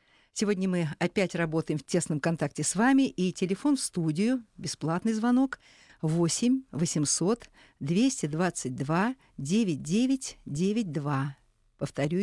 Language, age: Russian, 50-69